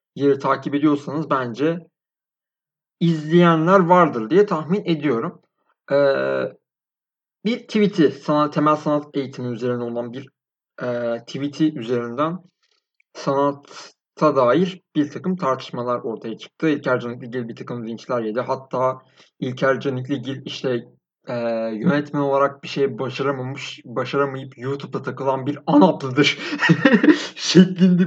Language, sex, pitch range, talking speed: Turkish, male, 130-180 Hz, 110 wpm